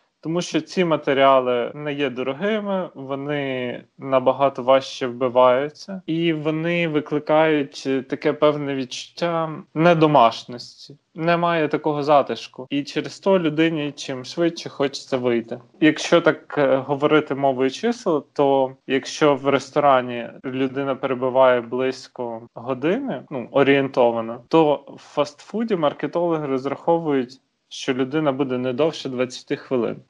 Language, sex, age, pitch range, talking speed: Ukrainian, male, 20-39, 130-155 Hz, 110 wpm